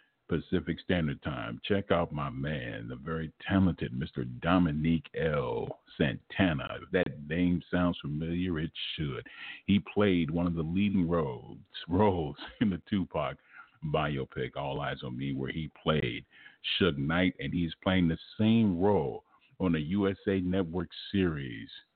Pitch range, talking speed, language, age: 75-95 Hz, 145 wpm, English, 50-69